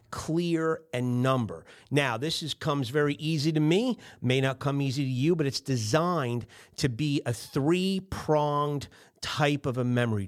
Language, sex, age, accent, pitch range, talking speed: English, male, 40-59, American, 115-150 Hz, 160 wpm